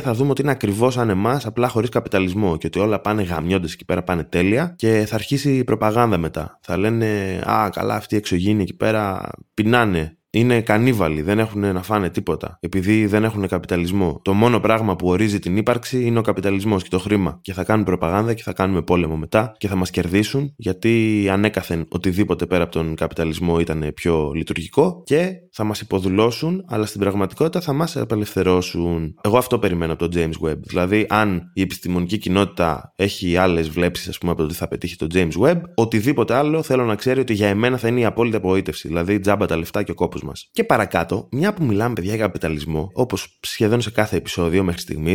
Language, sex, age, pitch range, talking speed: Greek, male, 20-39, 90-120 Hz, 200 wpm